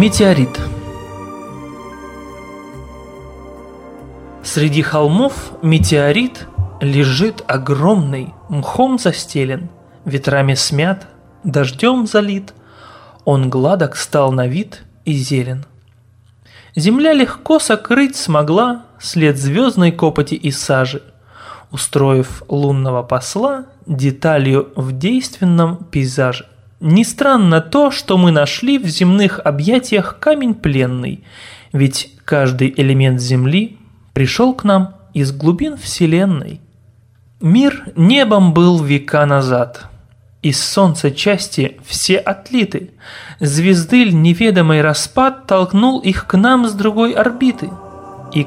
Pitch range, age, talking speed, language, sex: 135-205 Hz, 30-49, 95 wpm, Russian, male